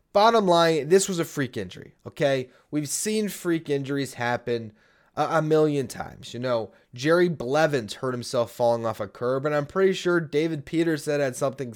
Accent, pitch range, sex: American, 125-155 Hz, male